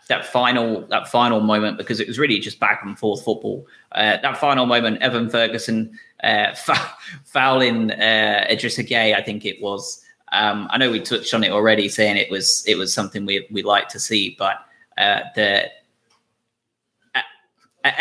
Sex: male